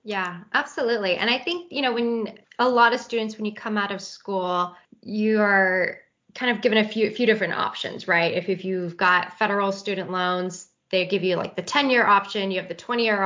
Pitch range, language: 195-245 Hz, English